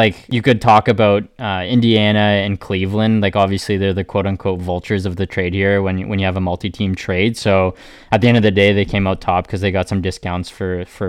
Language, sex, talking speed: English, male, 240 wpm